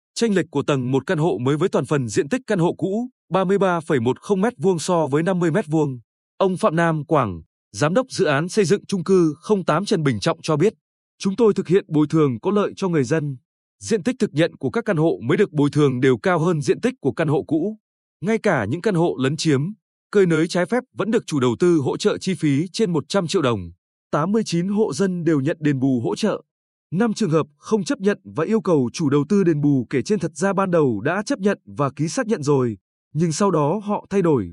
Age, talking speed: 20-39, 240 wpm